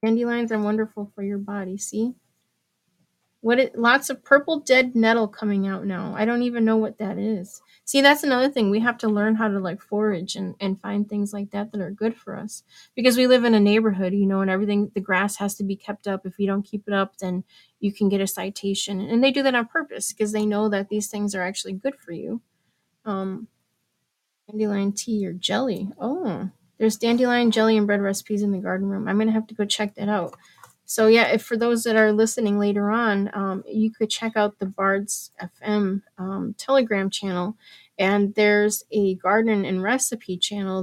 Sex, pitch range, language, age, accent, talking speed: female, 195-225 Hz, English, 30-49, American, 215 wpm